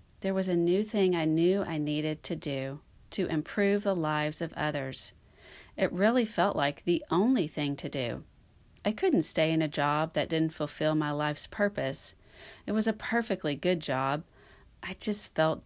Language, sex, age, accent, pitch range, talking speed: English, female, 40-59, American, 145-185 Hz, 180 wpm